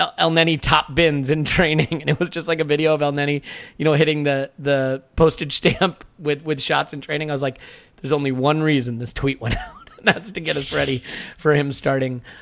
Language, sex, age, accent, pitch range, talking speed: English, male, 30-49, American, 135-180 Hz, 230 wpm